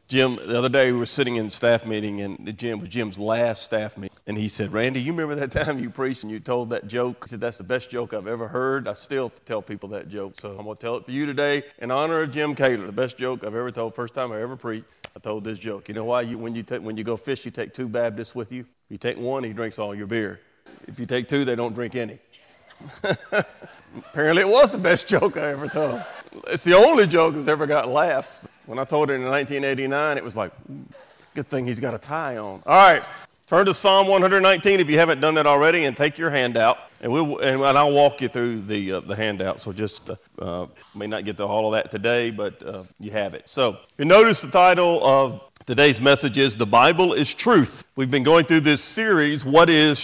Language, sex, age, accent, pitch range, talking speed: English, male, 40-59, American, 115-145 Hz, 245 wpm